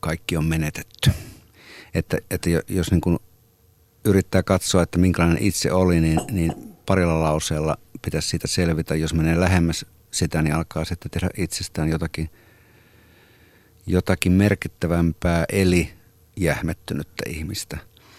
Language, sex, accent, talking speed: Finnish, male, native, 115 wpm